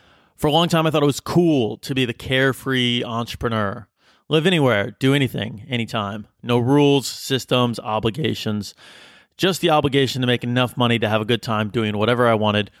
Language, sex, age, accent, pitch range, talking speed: English, male, 30-49, American, 115-150 Hz, 185 wpm